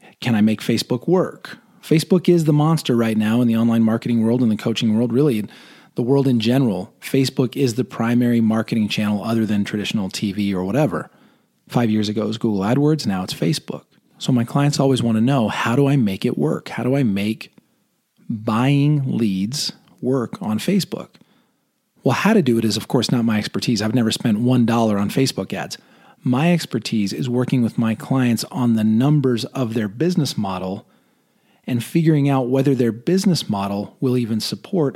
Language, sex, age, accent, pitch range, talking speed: English, male, 30-49, American, 110-140 Hz, 190 wpm